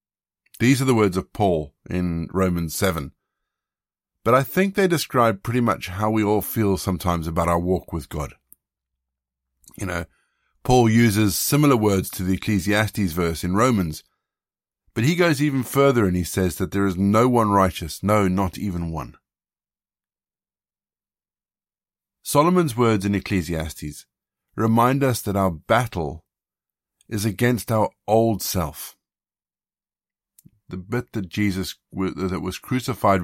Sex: male